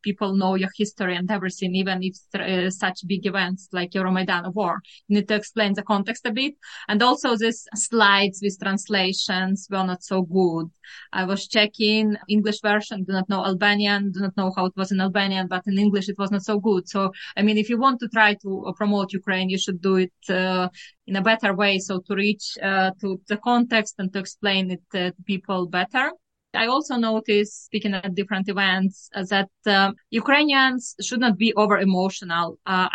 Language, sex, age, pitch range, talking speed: Ukrainian, female, 20-39, 190-215 Hz, 195 wpm